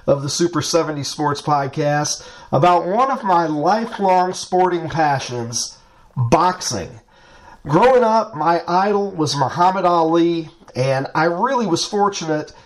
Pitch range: 145-180 Hz